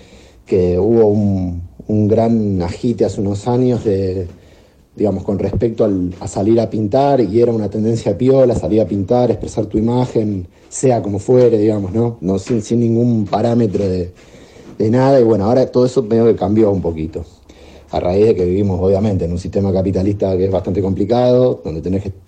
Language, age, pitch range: Spanish, 40-59, 100-120 Hz